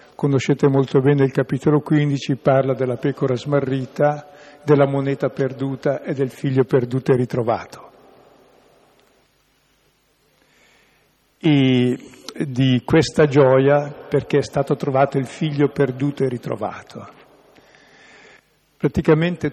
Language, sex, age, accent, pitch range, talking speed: Italian, male, 50-69, native, 135-155 Hz, 100 wpm